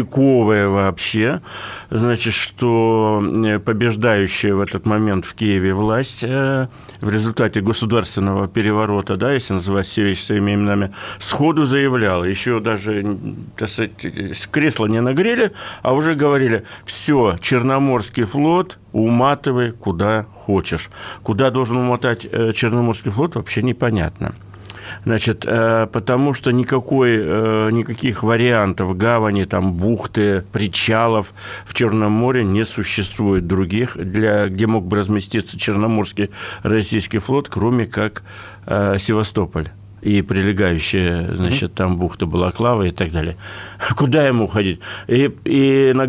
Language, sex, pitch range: Russian, male, 100-125 Hz